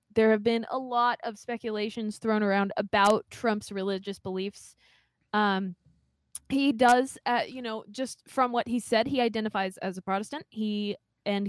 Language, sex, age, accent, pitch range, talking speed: English, female, 20-39, American, 205-255 Hz, 160 wpm